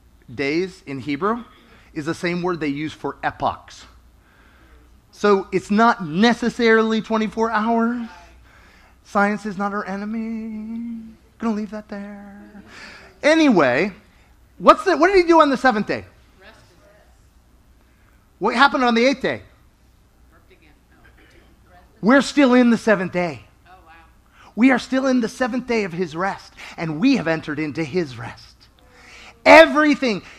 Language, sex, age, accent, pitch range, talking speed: English, male, 30-49, American, 175-270 Hz, 130 wpm